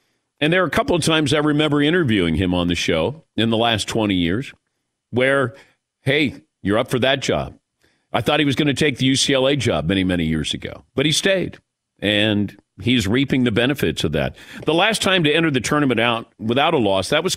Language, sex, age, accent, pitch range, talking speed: English, male, 50-69, American, 95-135 Hz, 220 wpm